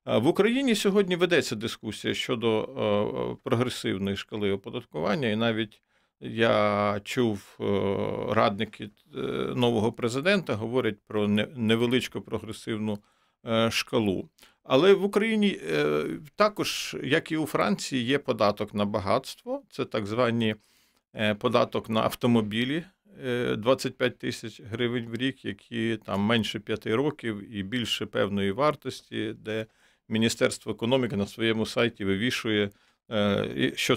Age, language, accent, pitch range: 50-69, Ukrainian, native, 105-135 Hz